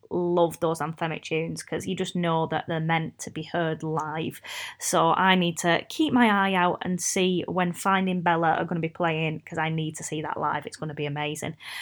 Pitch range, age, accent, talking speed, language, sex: 170-210 Hz, 20-39, British, 230 wpm, English, female